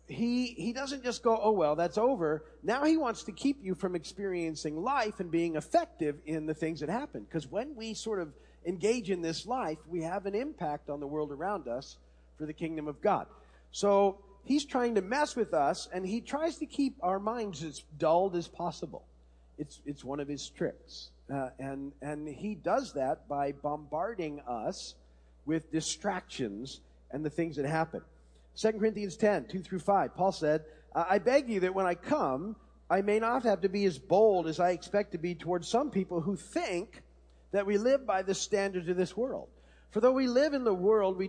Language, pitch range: English, 155-215 Hz